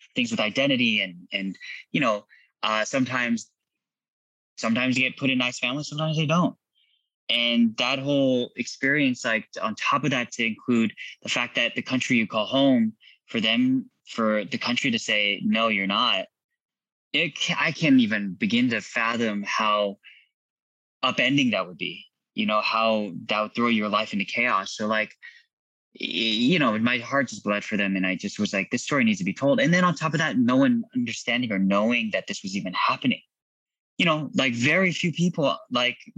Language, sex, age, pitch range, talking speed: English, male, 20-39, 105-165 Hz, 185 wpm